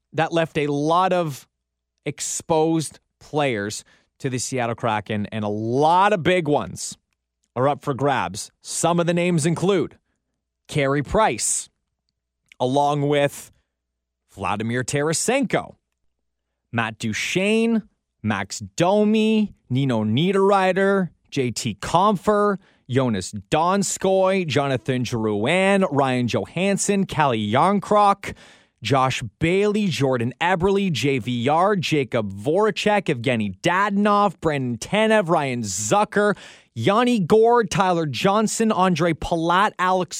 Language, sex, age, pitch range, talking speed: English, male, 30-49, 115-195 Hz, 100 wpm